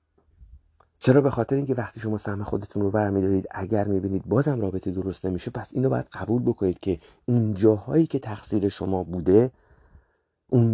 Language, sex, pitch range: Persian, male, 95-125 Hz